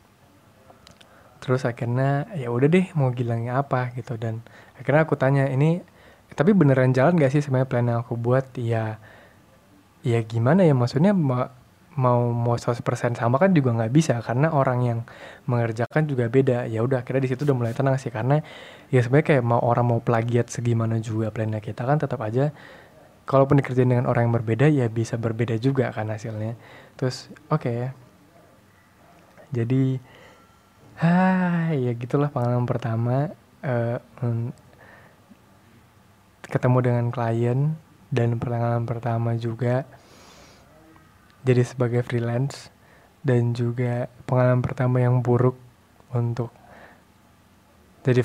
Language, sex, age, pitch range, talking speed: Indonesian, male, 20-39, 115-135 Hz, 135 wpm